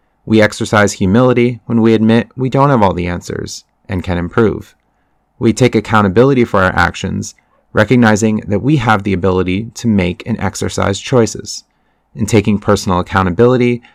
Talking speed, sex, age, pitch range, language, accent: 155 wpm, male, 30-49, 95-115 Hz, English, American